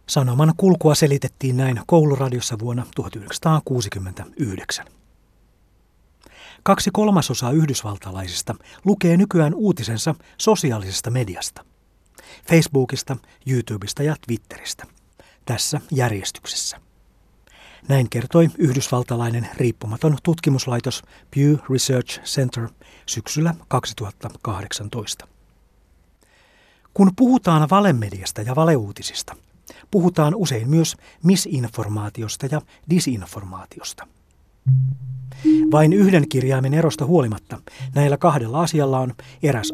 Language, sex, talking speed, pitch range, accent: Finnish, male, 80 wpm, 110-155 Hz, native